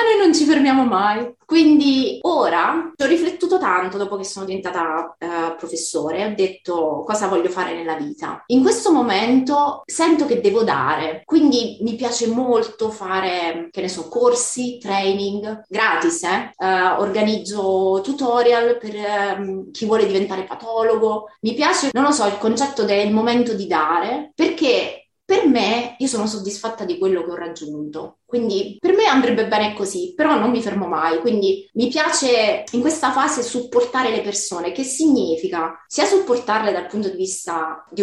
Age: 20-39